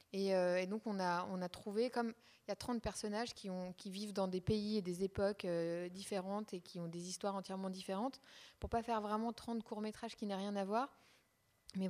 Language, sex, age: French, female, 20-39